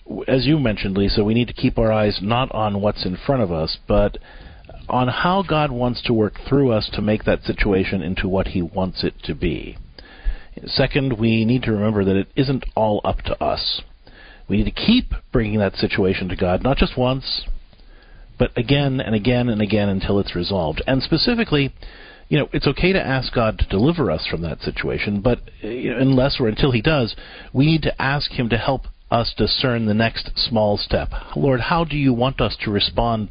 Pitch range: 100-135 Hz